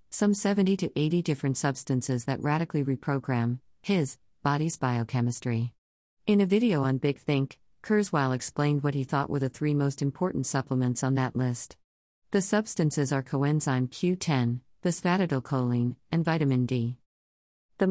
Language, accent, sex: English, American, female